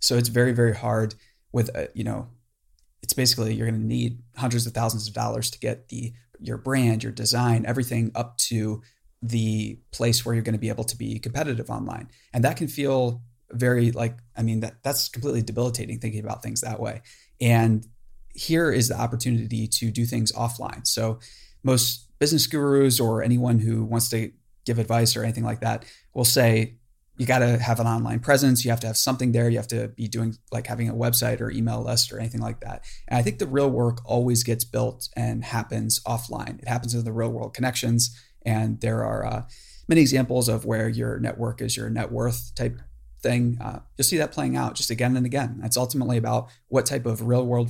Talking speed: 210 wpm